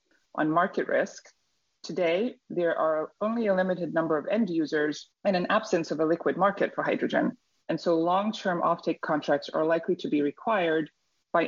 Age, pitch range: 30-49, 155-190 Hz